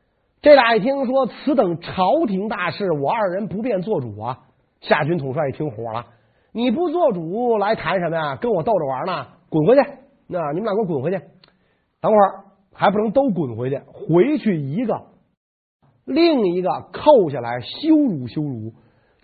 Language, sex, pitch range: Chinese, male, 140-225 Hz